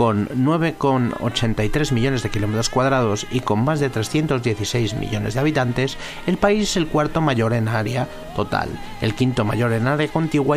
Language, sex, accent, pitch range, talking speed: Spanish, male, Spanish, 110-140 Hz, 165 wpm